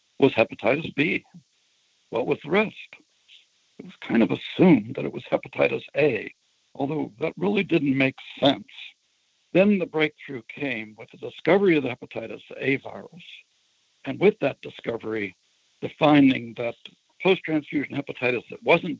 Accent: American